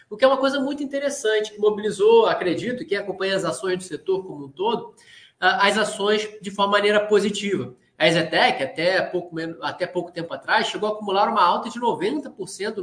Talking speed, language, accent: 180 wpm, Portuguese, Brazilian